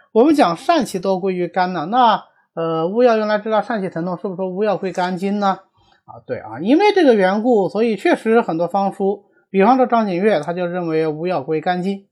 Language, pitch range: Chinese, 150-215 Hz